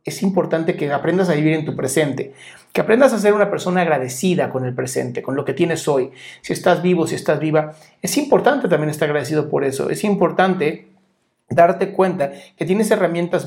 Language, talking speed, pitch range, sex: Spanish, 195 wpm, 160-195 Hz, male